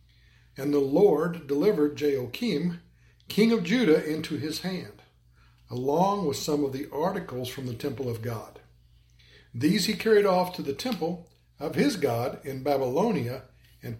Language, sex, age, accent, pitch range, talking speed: English, male, 60-79, American, 115-175 Hz, 150 wpm